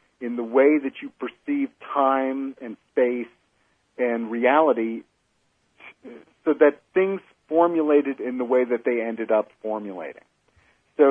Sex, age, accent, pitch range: male, 50-69, American, 115-160 Hz